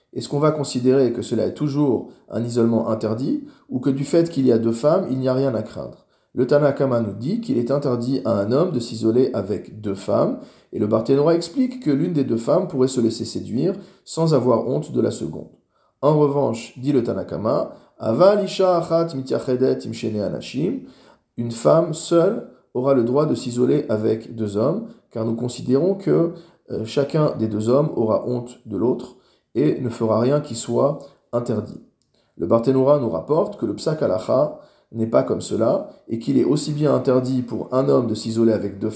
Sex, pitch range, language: male, 115-145 Hz, French